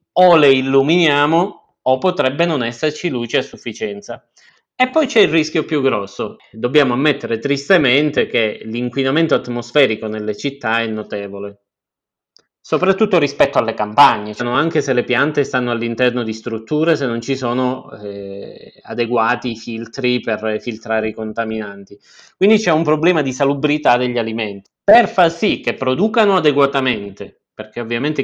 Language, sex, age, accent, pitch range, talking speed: Italian, male, 30-49, native, 115-150 Hz, 140 wpm